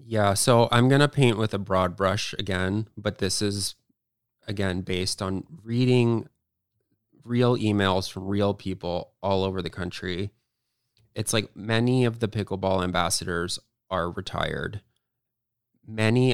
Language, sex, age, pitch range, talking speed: English, male, 20-39, 95-110 Hz, 135 wpm